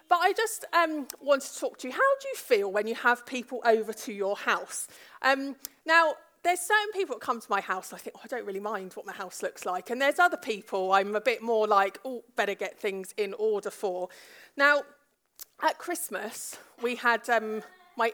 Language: English